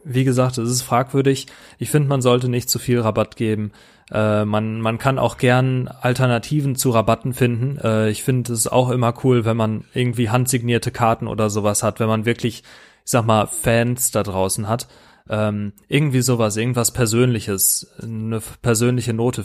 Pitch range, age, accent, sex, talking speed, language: 110-125 Hz, 30-49, German, male, 175 wpm, German